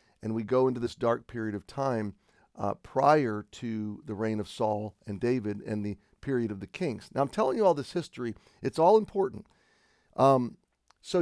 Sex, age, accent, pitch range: male, 40-59, American, 110-135 Hz